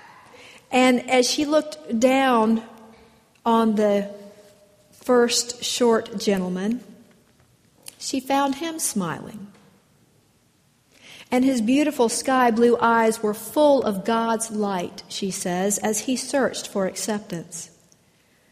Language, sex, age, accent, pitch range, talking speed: English, female, 50-69, American, 195-235 Hz, 100 wpm